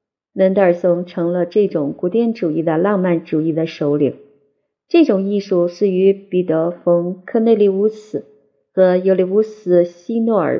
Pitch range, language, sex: 170-215 Hz, Chinese, female